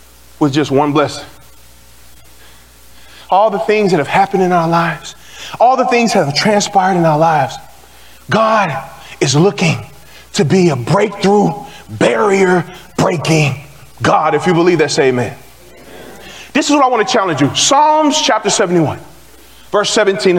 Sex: male